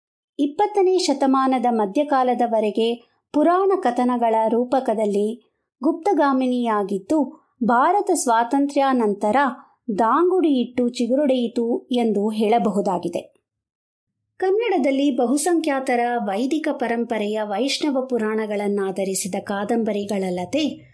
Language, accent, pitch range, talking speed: Kannada, native, 225-280 Hz, 60 wpm